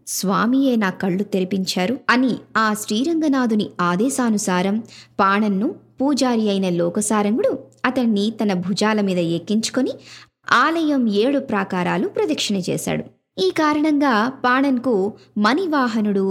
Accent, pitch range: native, 195-265 Hz